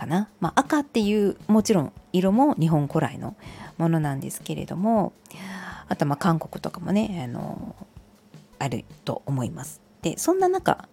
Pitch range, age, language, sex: 170-265 Hz, 40-59, Japanese, female